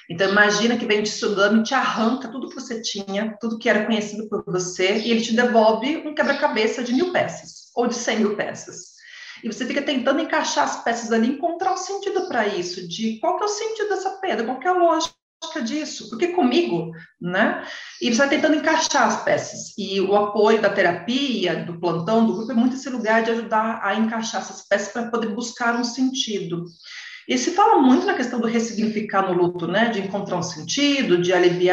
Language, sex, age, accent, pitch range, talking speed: Portuguese, female, 40-59, Brazilian, 205-270 Hz, 210 wpm